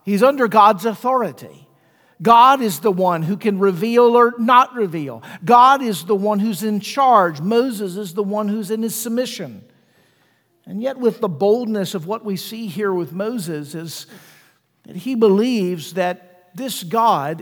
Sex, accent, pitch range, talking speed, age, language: male, American, 185-235 Hz, 165 wpm, 50-69, English